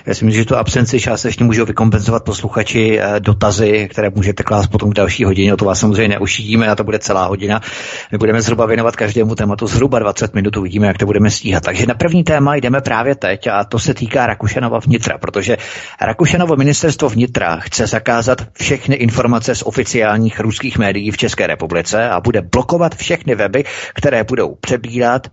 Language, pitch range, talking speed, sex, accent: Czech, 105-125 Hz, 185 wpm, male, native